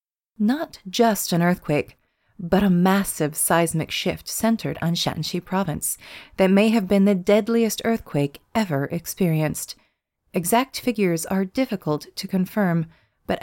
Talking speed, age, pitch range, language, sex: 130 wpm, 30-49, 160-200 Hz, English, female